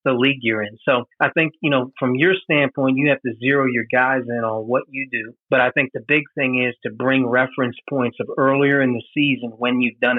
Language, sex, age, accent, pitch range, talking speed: English, male, 40-59, American, 120-135 Hz, 245 wpm